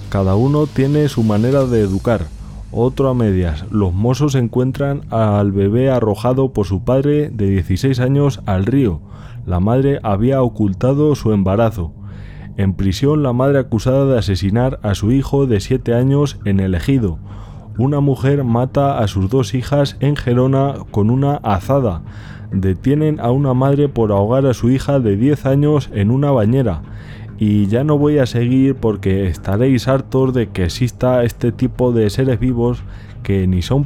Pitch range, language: 100-130 Hz, Spanish